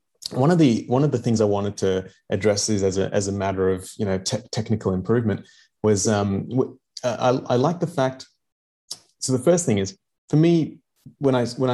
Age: 30-49